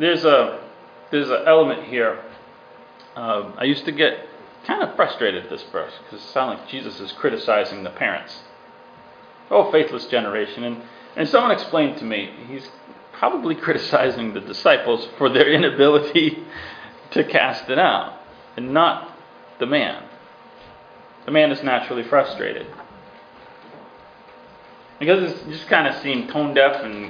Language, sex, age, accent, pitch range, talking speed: English, male, 30-49, American, 100-165 Hz, 145 wpm